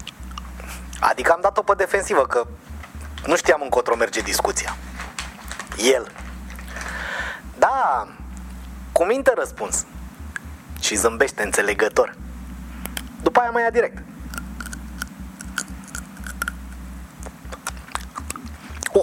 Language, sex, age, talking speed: Romanian, male, 30-49, 75 wpm